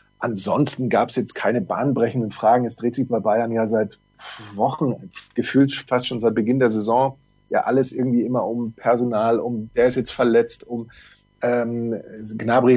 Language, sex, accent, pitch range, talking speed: English, male, German, 110-125 Hz, 170 wpm